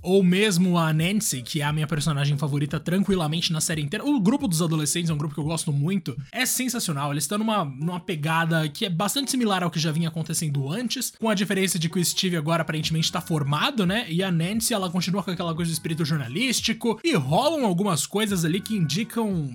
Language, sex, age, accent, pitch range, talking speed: Portuguese, male, 20-39, Brazilian, 160-220 Hz, 220 wpm